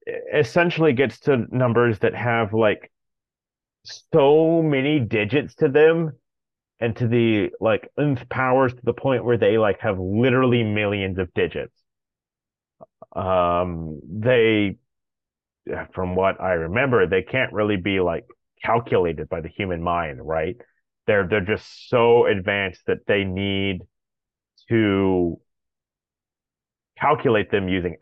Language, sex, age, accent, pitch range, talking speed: English, male, 30-49, American, 95-130 Hz, 125 wpm